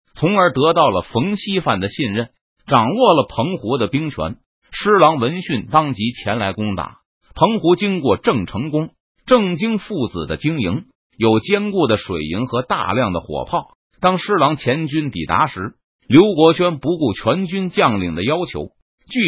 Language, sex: Chinese, male